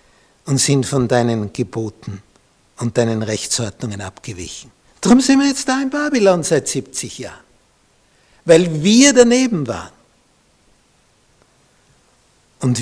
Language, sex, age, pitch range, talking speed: German, male, 60-79, 120-170 Hz, 110 wpm